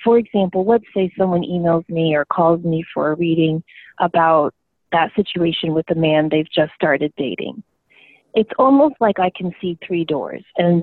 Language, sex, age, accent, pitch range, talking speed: English, female, 30-49, American, 165-195 Hz, 175 wpm